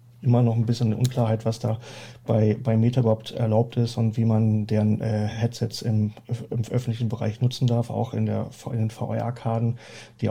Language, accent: German, German